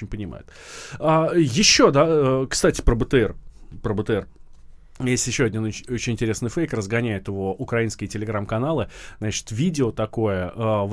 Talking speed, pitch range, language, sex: 120 wpm, 100-145 Hz, Russian, male